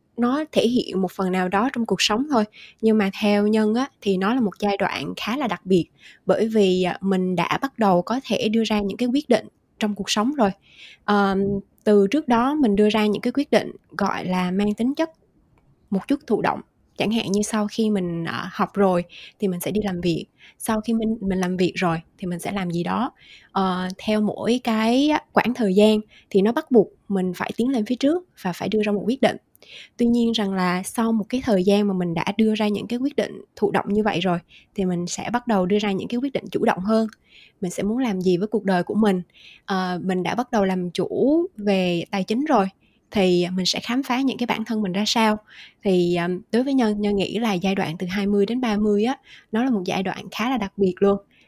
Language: Vietnamese